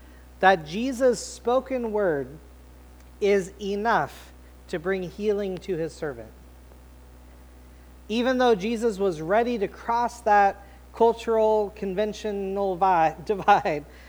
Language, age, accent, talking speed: English, 40-59, American, 100 wpm